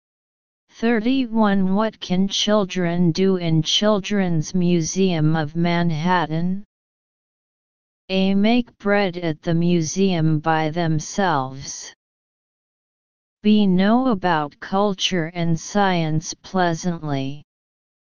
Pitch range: 165-200 Hz